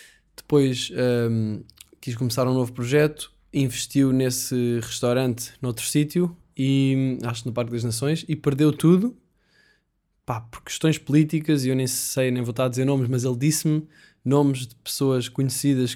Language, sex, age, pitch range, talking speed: Portuguese, male, 20-39, 120-150 Hz, 150 wpm